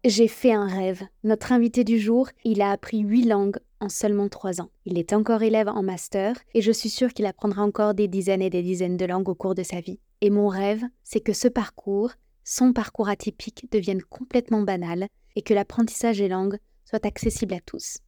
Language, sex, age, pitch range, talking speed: French, female, 20-39, 200-245 Hz, 210 wpm